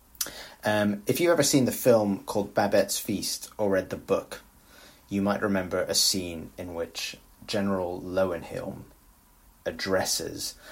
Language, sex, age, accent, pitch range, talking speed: English, male, 20-39, British, 85-110 Hz, 135 wpm